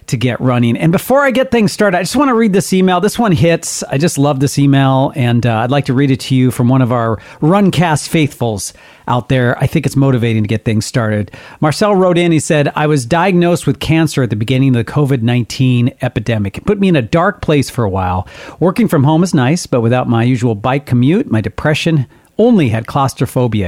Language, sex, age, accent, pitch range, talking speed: English, male, 40-59, American, 125-175 Hz, 235 wpm